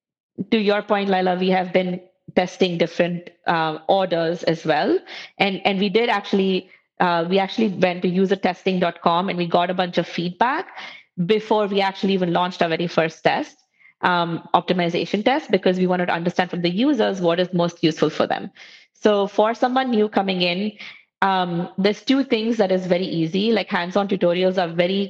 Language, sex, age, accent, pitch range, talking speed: English, female, 20-39, Indian, 175-205 Hz, 185 wpm